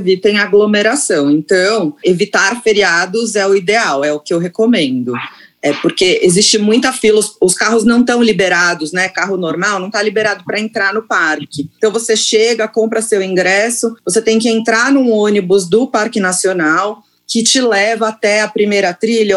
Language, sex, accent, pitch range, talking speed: Portuguese, female, Brazilian, 195-230 Hz, 175 wpm